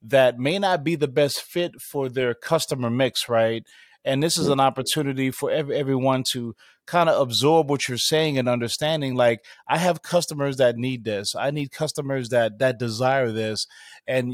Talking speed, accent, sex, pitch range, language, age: 180 wpm, American, male, 125-145 Hz, English, 30-49